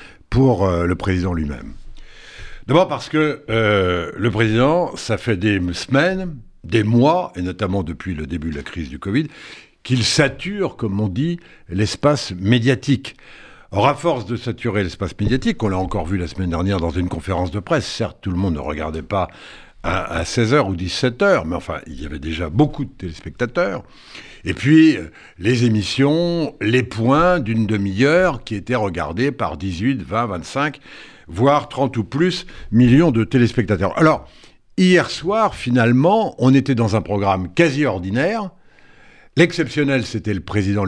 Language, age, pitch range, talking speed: French, 70-89, 95-145 Hz, 160 wpm